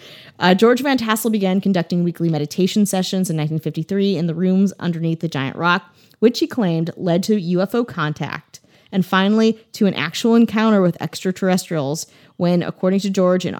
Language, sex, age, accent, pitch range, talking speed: English, female, 20-39, American, 165-200 Hz, 170 wpm